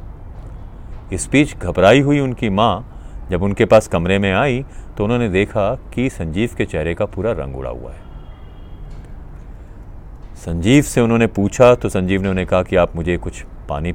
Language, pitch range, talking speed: Hindi, 80-105 Hz, 170 wpm